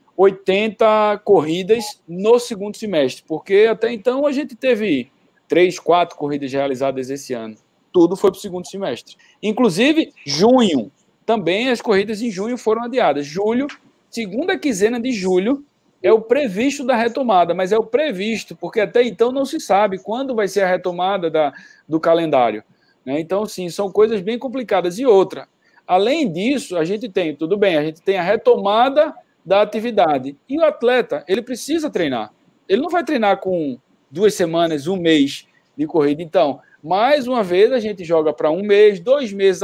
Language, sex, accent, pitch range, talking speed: Portuguese, male, Brazilian, 175-255 Hz, 170 wpm